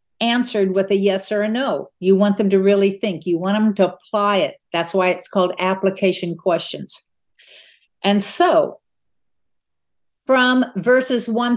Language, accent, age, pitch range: English, American, 60-79, 175-220 Hz